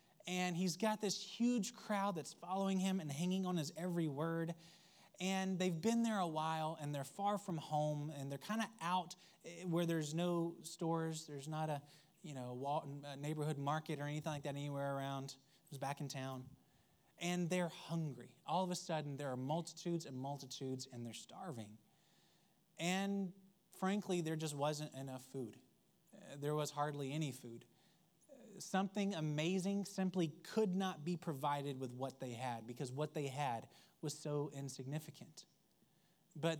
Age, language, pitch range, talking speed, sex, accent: 20-39, English, 140-180 Hz, 160 wpm, male, American